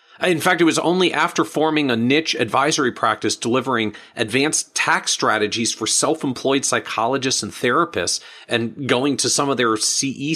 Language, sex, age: English, male, 40-59